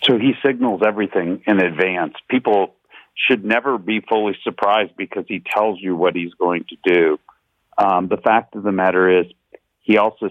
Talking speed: 175 wpm